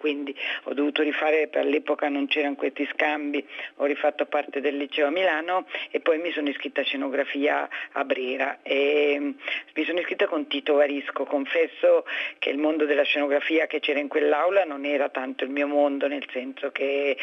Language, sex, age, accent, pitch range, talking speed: Italian, female, 50-69, native, 140-155 Hz, 180 wpm